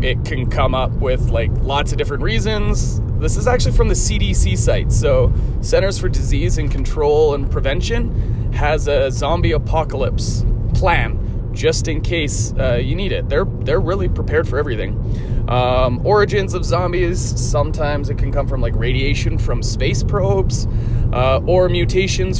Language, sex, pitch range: English, male, 105-120 Hz